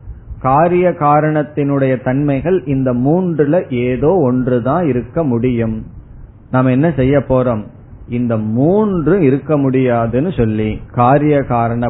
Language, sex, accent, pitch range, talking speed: Tamil, male, native, 115-150 Hz, 95 wpm